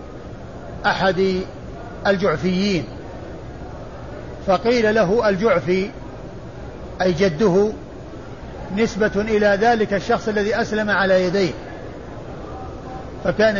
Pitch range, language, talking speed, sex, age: 190-220 Hz, Arabic, 70 wpm, male, 50-69